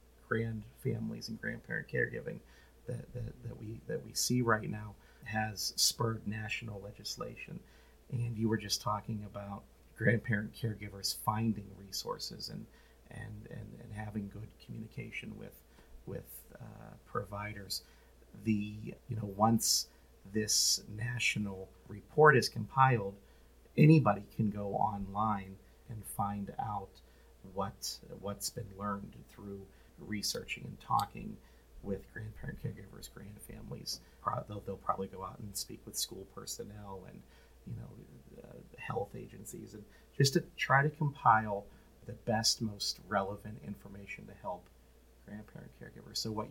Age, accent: 40-59, American